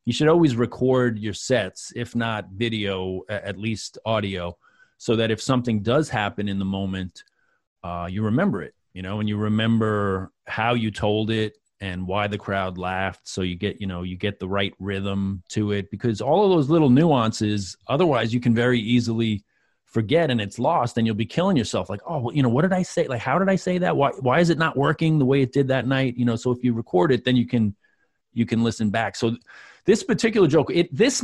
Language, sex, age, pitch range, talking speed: English, male, 30-49, 105-130 Hz, 225 wpm